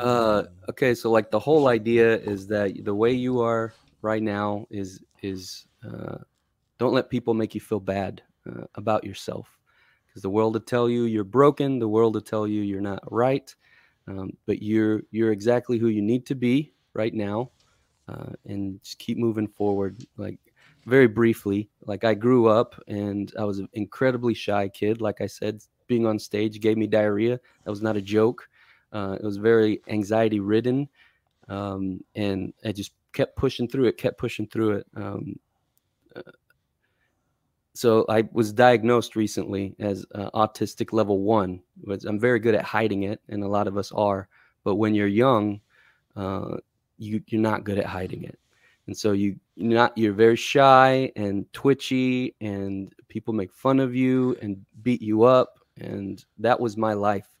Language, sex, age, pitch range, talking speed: English, male, 30-49, 100-120 Hz, 180 wpm